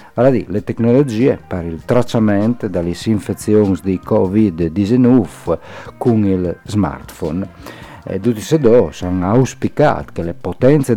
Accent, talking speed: native, 110 wpm